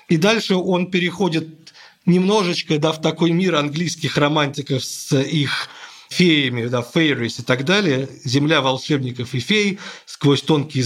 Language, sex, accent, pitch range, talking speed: Russian, male, native, 125-165 Hz, 125 wpm